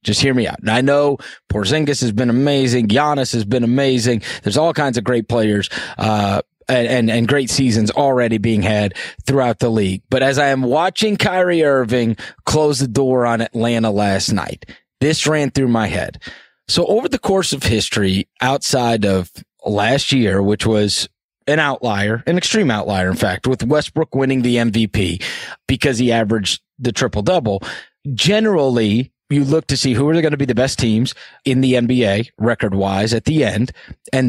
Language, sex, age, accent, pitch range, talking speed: English, male, 30-49, American, 110-145 Hz, 180 wpm